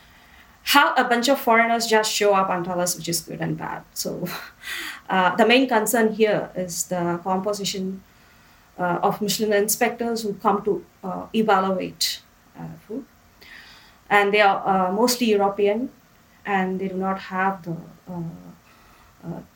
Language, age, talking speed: English, 20-39, 150 wpm